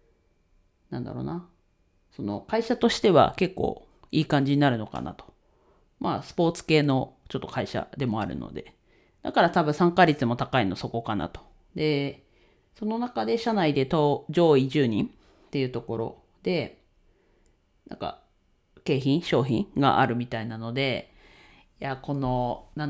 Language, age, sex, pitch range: Japanese, 40-59, female, 120-175 Hz